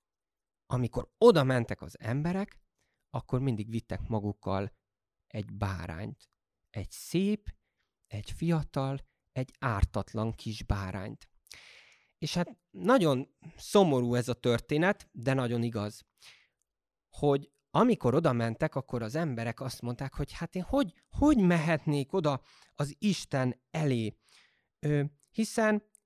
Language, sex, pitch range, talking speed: Hungarian, male, 115-165 Hz, 115 wpm